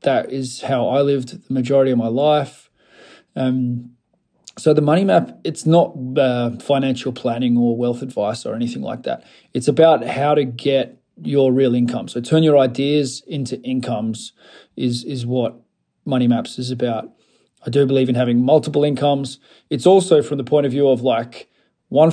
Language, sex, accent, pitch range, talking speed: English, male, Australian, 130-155 Hz, 175 wpm